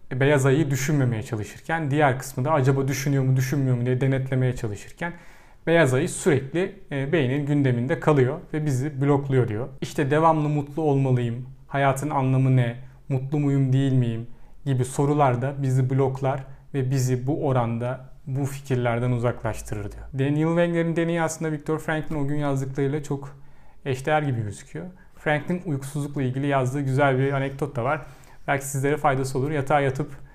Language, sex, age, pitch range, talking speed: Turkish, male, 40-59, 130-155 Hz, 150 wpm